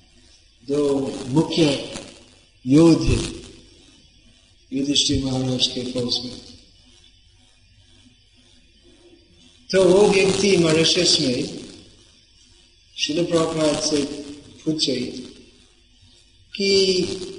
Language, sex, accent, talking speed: Hindi, male, native, 60 wpm